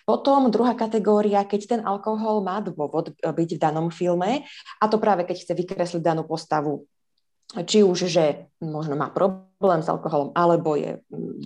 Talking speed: 160 wpm